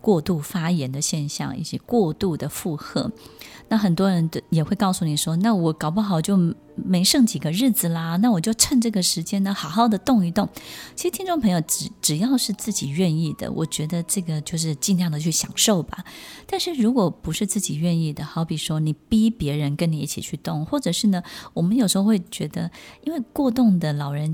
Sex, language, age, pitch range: female, Chinese, 20-39, 160-205 Hz